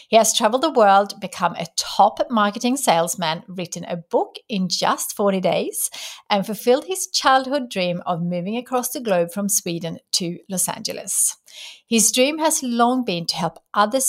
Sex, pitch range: female, 185-255 Hz